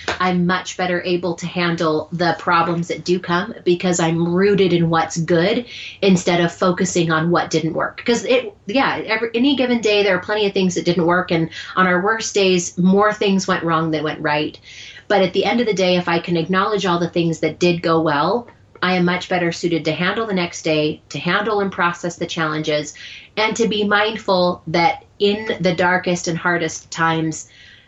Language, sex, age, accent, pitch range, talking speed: English, female, 30-49, American, 160-190 Hz, 205 wpm